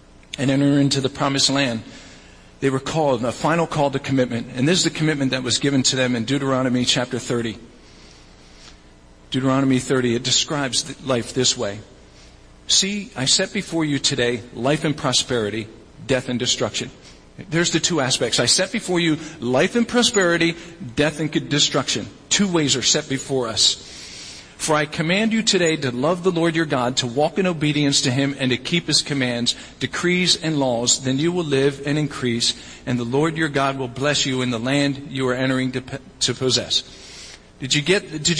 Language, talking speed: English, 180 wpm